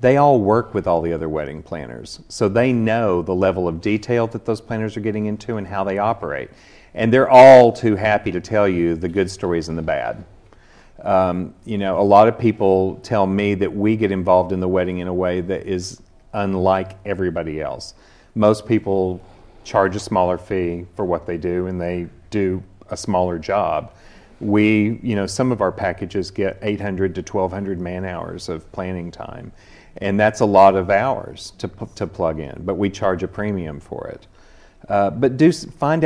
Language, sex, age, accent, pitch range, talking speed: English, male, 40-59, American, 95-115 Hz, 195 wpm